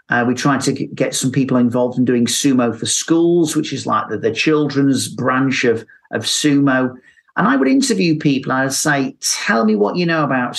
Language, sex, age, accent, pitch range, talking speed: English, male, 40-59, British, 130-175 Hz, 215 wpm